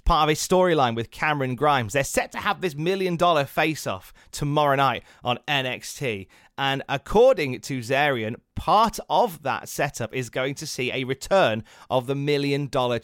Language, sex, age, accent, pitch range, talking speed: English, male, 30-49, British, 125-200 Hz, 160 wpm